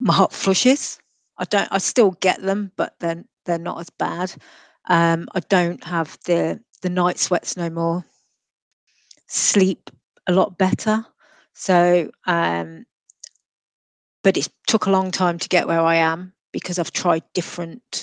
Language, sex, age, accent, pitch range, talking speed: English, female, 40-59, British, 165-185 Hz, 155 wpm